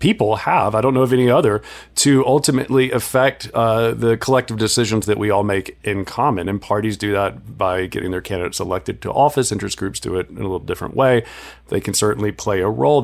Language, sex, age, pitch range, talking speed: English, male, 40-59, 105-135 Hz, 215 wpm